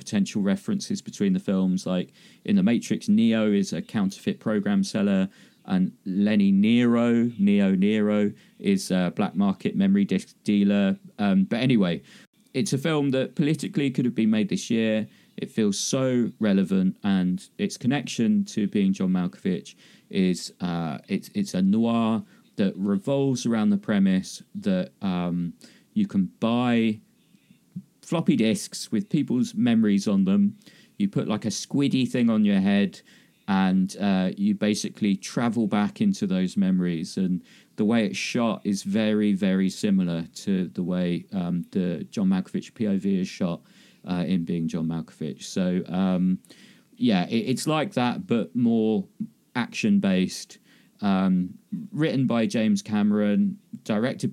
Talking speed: 145 wpm